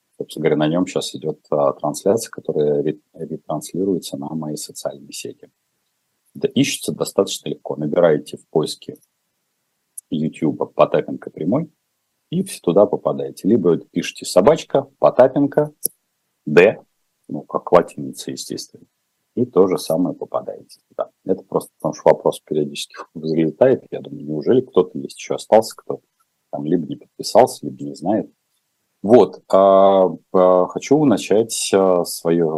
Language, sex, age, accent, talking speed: Russian, male, 40-59, native, 125 wpm